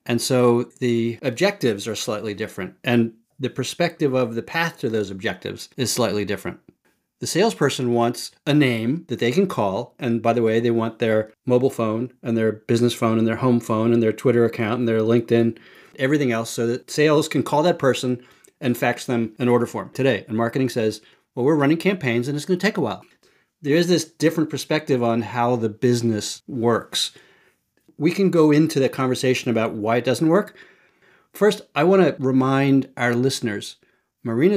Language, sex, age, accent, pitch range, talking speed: English, male, 40-59, American, 115-145 Hz, 190 wpm